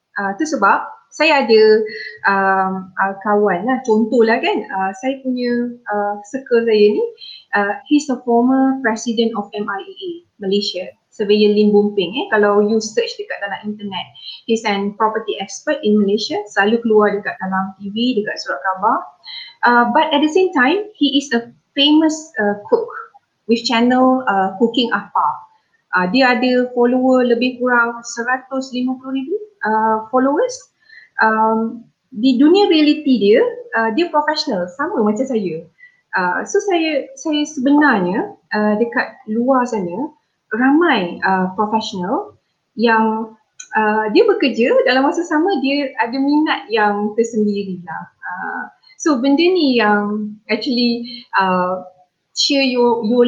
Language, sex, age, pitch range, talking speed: Malay, female, 20-39, 210-285 Hz, 135 wpm